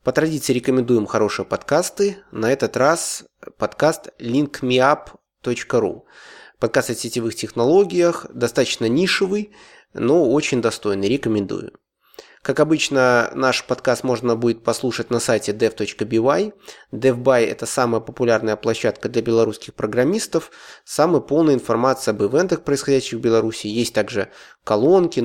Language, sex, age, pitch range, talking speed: English, male, 20-39, 115-140 Hz, 115 wpm